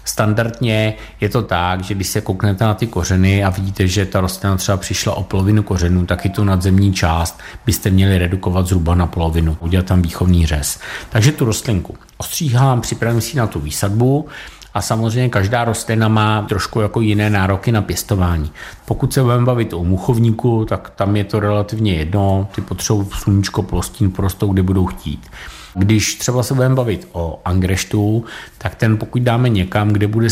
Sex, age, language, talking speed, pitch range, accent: male, 50-69, Czech, 180 wpm, 95-110 Hz, native